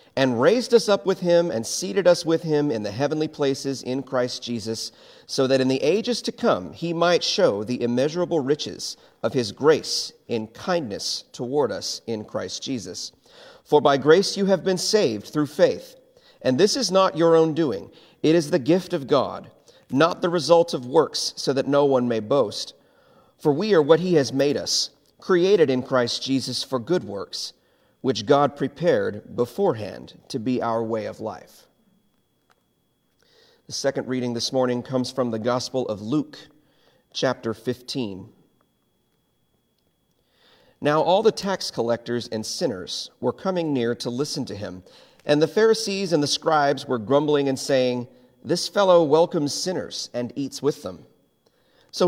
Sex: male